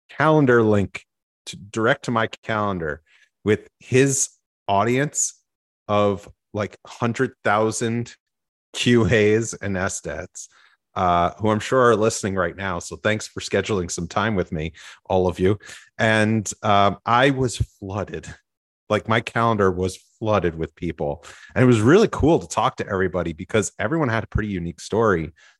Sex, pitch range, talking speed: male, 95-115 Hz, 150 wpm